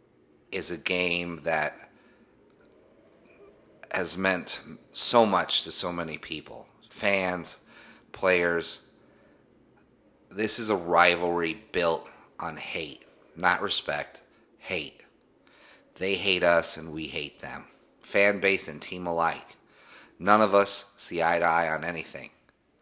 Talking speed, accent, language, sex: 120 wpm, American, English, male